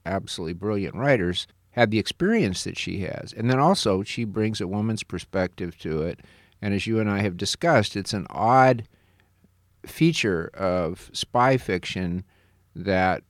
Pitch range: 90-105 Hz